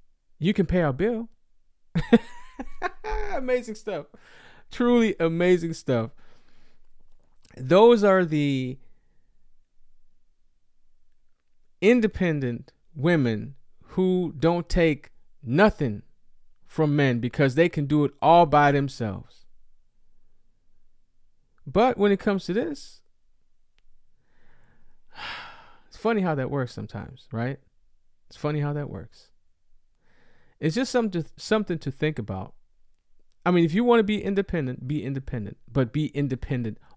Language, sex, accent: English, male, American